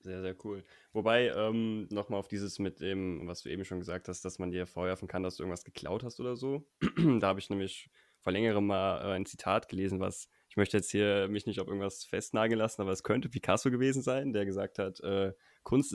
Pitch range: 95-115 Hz